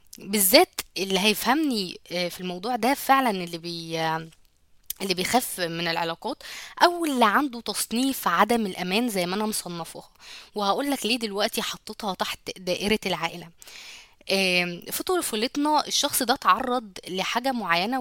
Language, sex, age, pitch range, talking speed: Arabic, female, 20-39, 185-240 Hz, 125 wpm